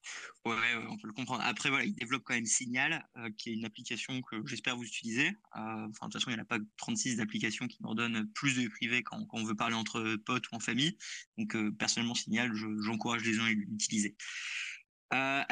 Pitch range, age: 115-145 Hz, 20-39